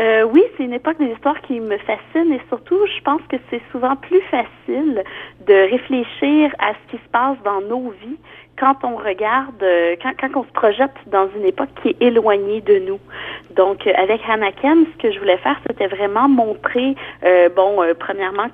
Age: 40-59